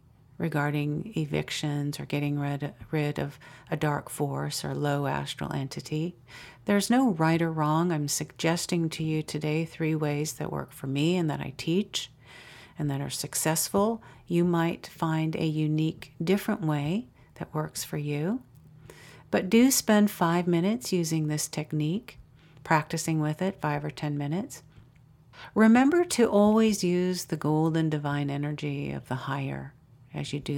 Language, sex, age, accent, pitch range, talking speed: English, female, 50-69, American, 145-170 Hz, 155 wpm